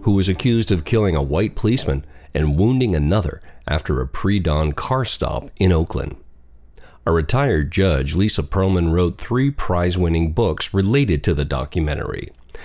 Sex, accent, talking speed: male, American, 145 wpm